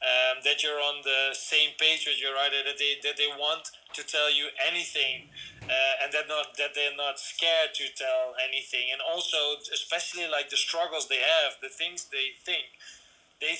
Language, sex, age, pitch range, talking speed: English, male, 30-49, 145-175 Hz, 190 wpm